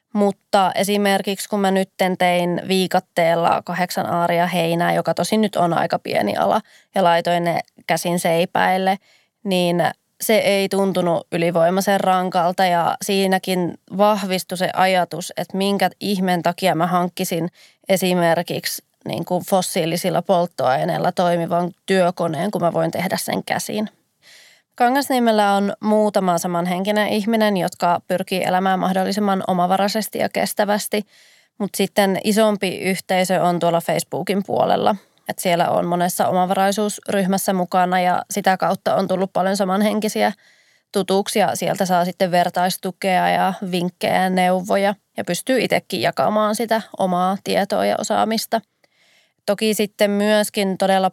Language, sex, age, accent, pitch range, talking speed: Finnish, female, 20-39, native, 175-200 Hz, 125 wpm